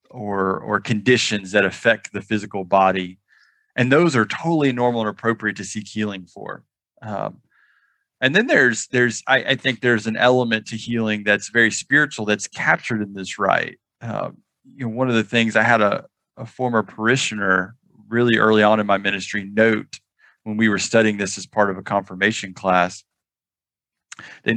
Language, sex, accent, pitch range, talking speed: English, male, American, 100-120 Hz, 175 wpm